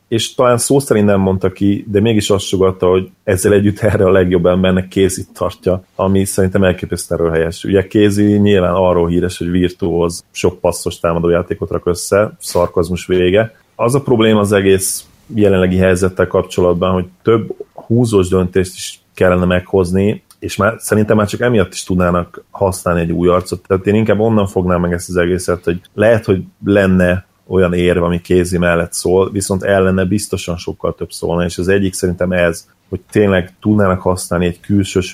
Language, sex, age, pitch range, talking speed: Hungarian, male, 30-49, 90-100 Hz, 170 wpm